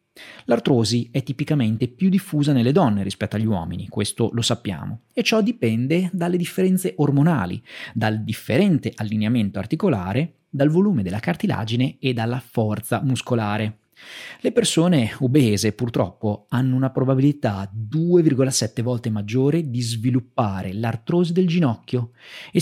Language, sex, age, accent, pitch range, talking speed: Italian, male, 30-49, native, 115-160 Hz, 125 wpm